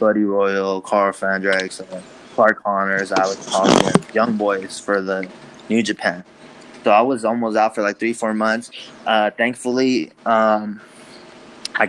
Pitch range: 100-115 Hz